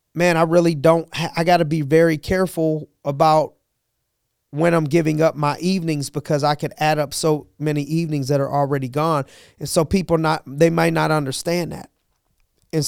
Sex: male